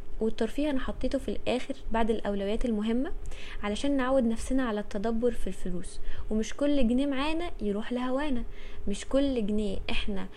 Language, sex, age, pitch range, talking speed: Arabic, female, 20-39, 195-240 Hz, 145 wpm